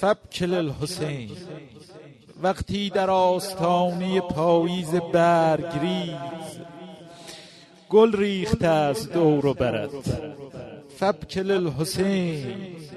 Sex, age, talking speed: male, 50-69, 70 wpm